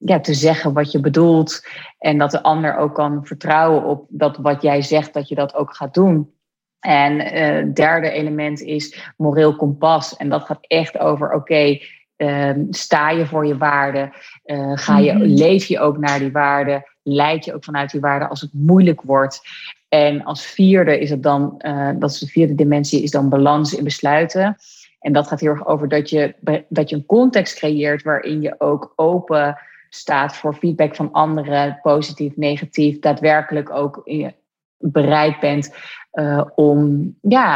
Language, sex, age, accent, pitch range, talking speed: Dutch, female, 30-49, Dutch, 145-160 Hz, 175 wpm